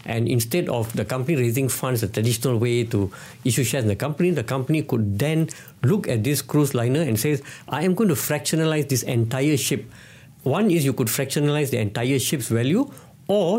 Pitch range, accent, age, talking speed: 120-150 Hz, Indian, 60-79, 200 wpm